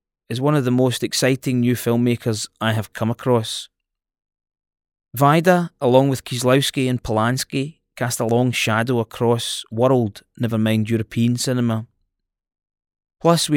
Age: 20-39